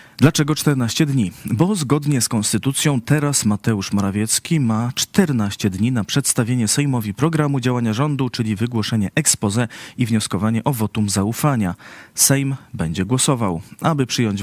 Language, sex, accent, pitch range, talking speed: Polish, male, native, 105-135 Hz, 135 wpm